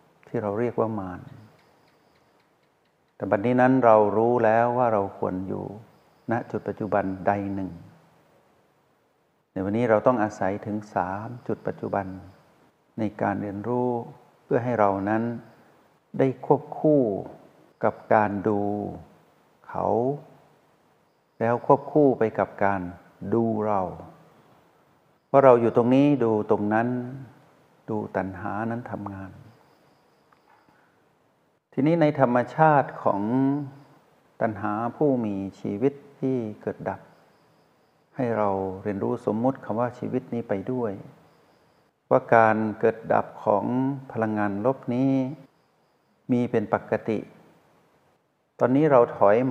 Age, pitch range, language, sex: 60-79, 100-130 Hz, Thai, male